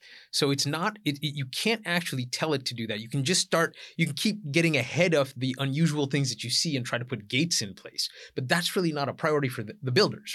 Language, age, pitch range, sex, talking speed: English, 30-49, 120-150 Hz, male, 255 wpm